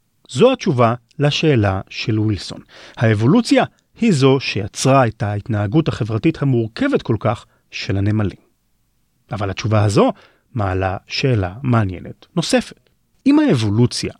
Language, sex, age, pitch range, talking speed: Hebrew, male, 30-49, 110-160 Hz, 110 wpm